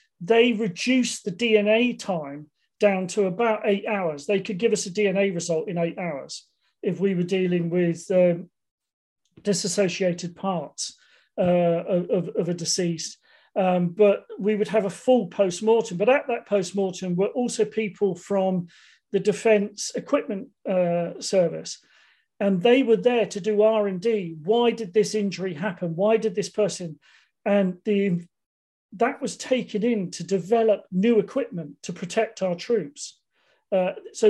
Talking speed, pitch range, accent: 150 wpm, 180-220 Hz, British